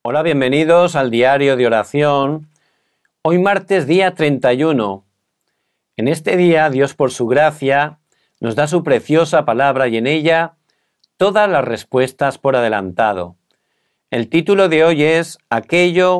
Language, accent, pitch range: Korean, Spanish, 120-165 Hz